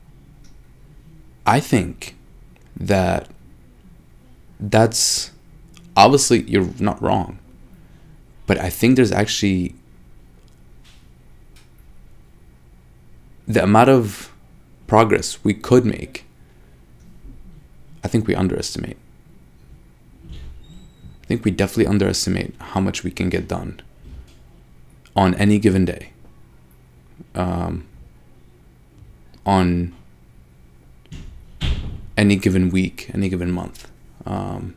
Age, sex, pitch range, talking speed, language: 30-49, male, 65-100 Hz, 85 wpm, English